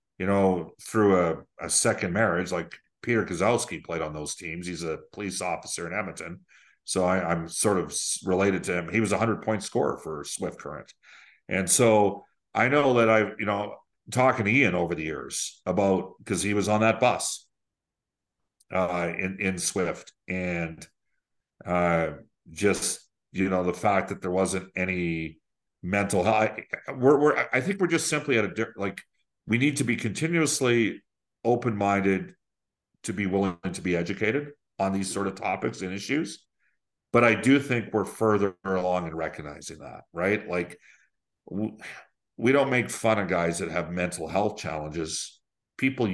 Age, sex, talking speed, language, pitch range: 50-69, male, 165 wpm, English, 90-110 Hz